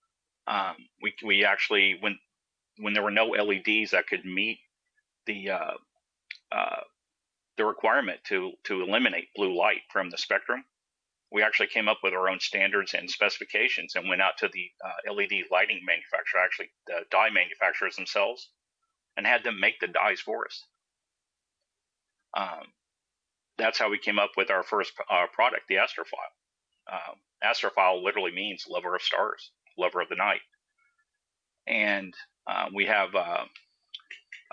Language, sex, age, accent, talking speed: English, male, 40-59, American, 150 wpm